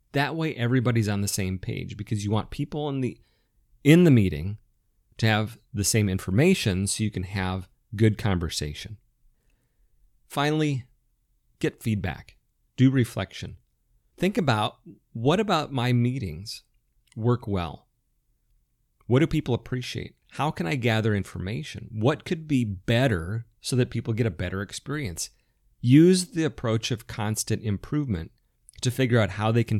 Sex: male